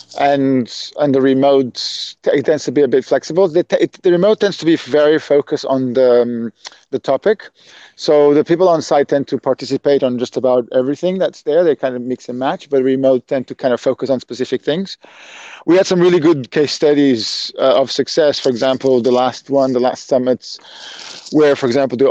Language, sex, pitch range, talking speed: English, male, 125-150 Hz, 215 wpm